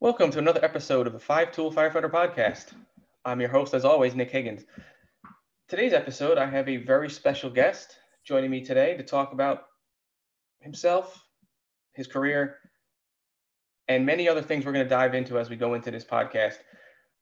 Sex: male